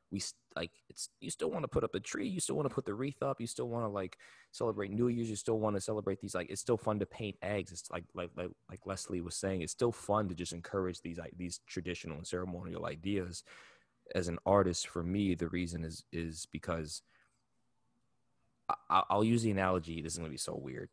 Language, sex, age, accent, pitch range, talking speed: English, male, 20-39, American, 85-105 Hz, 235 wpm